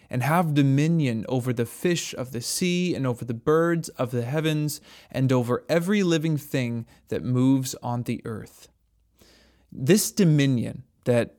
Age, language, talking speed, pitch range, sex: 20-39, English, 155 wpm, 125-160 Hz, male